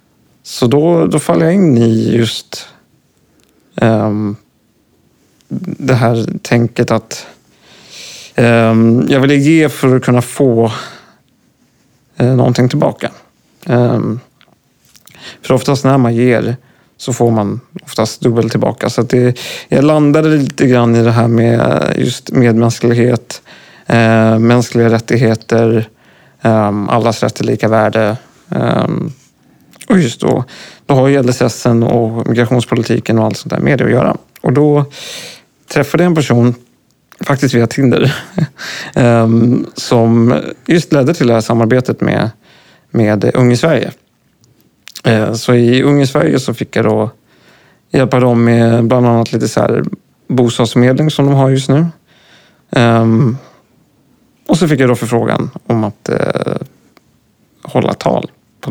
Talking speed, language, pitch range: 130 wpm, Swedish, 115-135 Hz